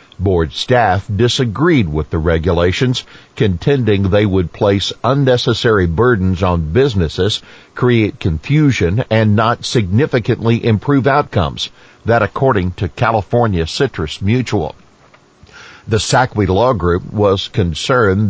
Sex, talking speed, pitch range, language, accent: male, 110 wpm, 90-115 Hz, English, American